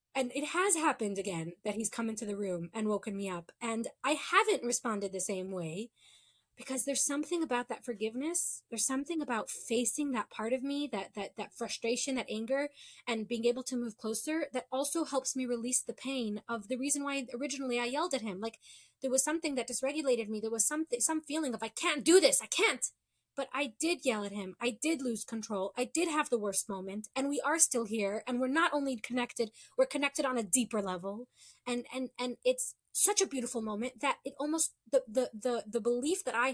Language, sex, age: English, female, 20-39